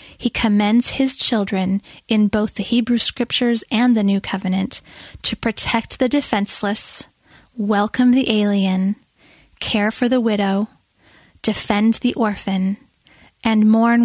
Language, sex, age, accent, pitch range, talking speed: English, female, 10-29, American, 205-235 Hz, 125 wpm